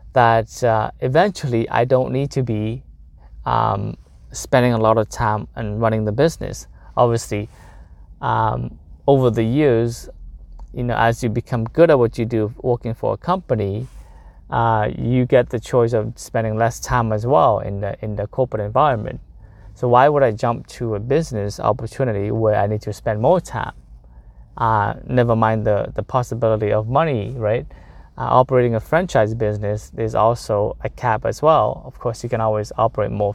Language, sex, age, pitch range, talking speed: English, male, 20-39, 105-125 Hz, 175 wpm